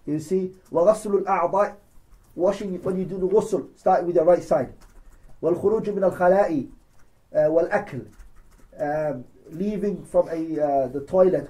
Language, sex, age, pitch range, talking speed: English, male, 30-49, 135-190 Hz, 105 wpm